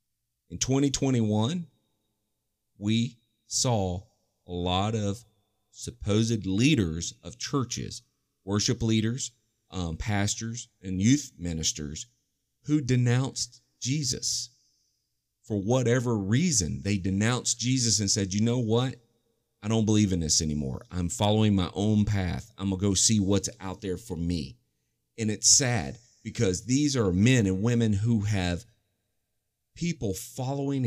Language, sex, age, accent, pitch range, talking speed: English, male, 40-59, American, 95-120 Hz, 130 wpm